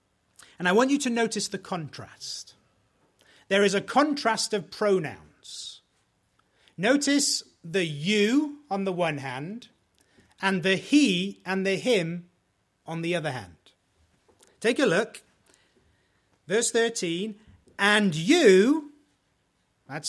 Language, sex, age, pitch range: English, male, 30-49, 155-230 Hz